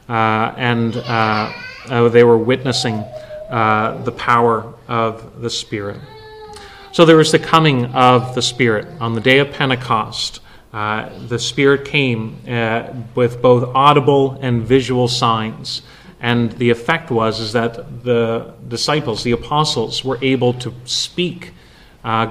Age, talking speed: 30-49, 140 wpm